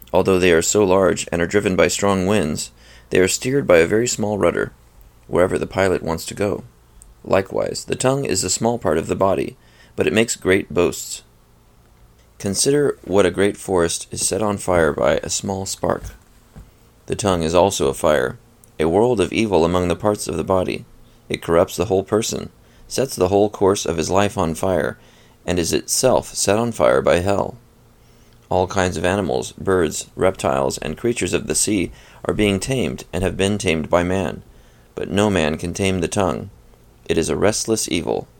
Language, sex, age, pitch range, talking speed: English, male, 30-49, 85-105 Hz, 190 wpm